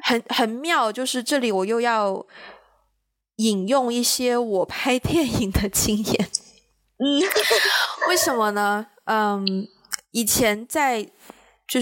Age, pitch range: 20-39, 205-250 Hz